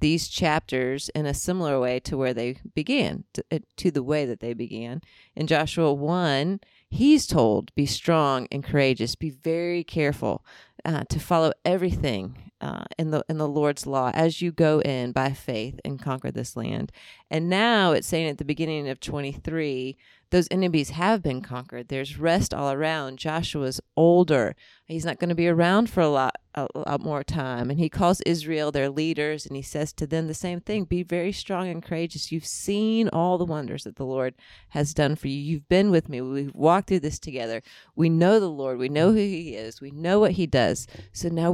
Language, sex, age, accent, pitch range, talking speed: English, female, 30-49, American, 135-170 Hz, 200 wpm